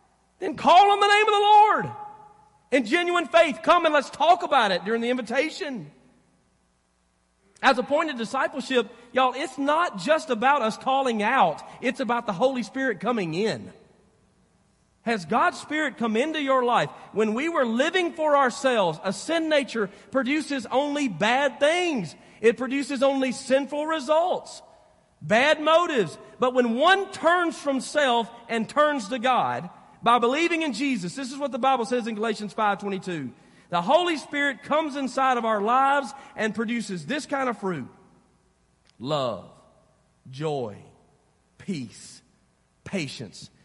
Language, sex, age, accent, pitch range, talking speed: English, male, 40-59, American, 195-290 Hz, 150 wpm